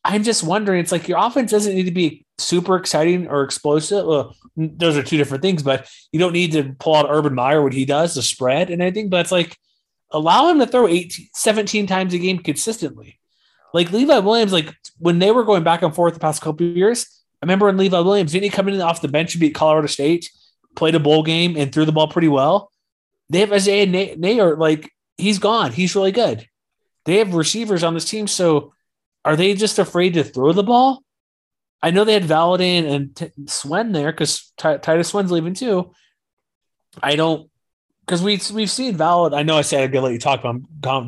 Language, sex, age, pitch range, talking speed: English, male, 20-39, 150-185 Hz, 225 wpm